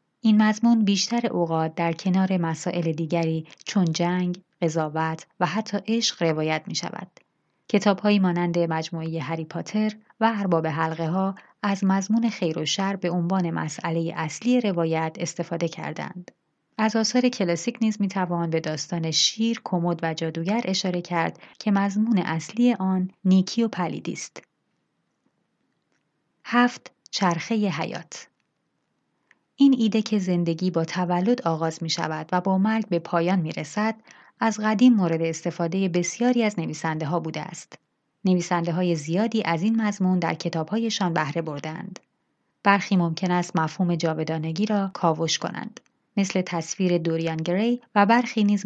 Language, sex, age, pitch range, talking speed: Persian, female, 30-49, 165-210 Hz, 130 wpm